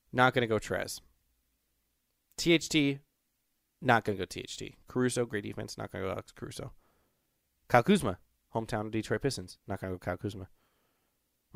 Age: 20-39